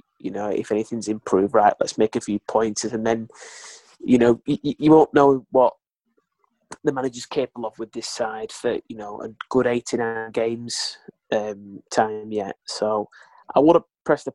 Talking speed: 175 wpm